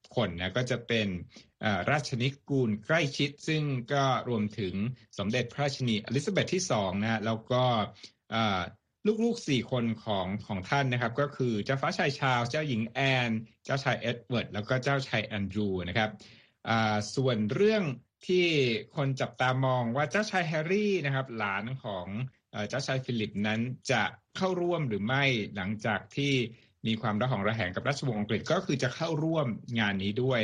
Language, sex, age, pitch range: Thai, male, 60-79, 105-140 Hz